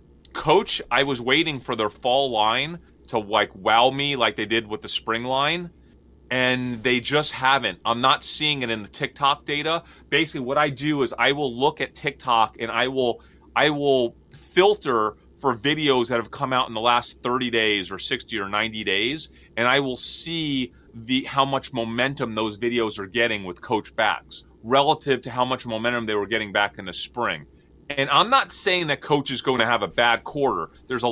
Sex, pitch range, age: male, 115-145 Hz, 30-49